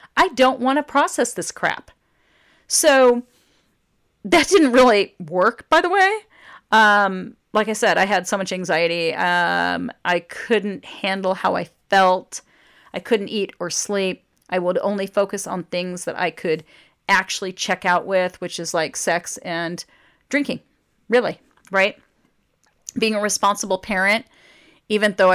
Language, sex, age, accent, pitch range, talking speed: English, female, 40-59, American, 180-220 Hz, 150 wpm